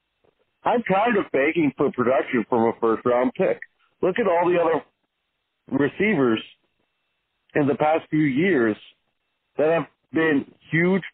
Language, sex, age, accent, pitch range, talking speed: English, male, 50-69, American, 135-190 Hz, 135 wpm